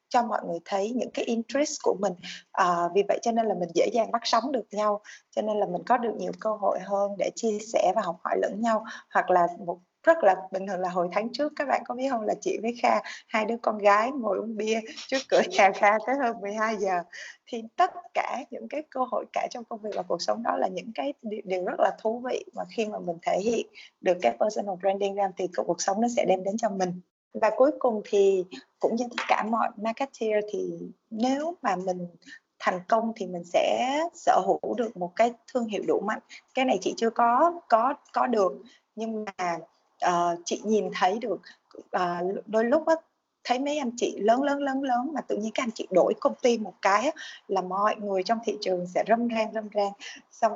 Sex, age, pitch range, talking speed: female, 20-39, 195-250 Hz, 230 wpm